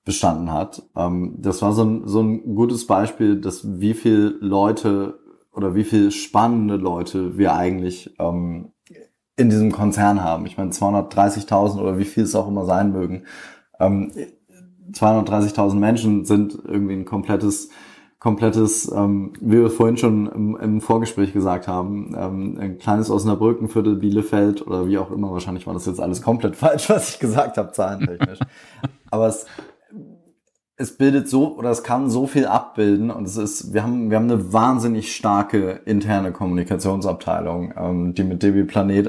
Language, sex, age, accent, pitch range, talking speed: German, male, 20-39, German, 100-115 Hz, 150 wpm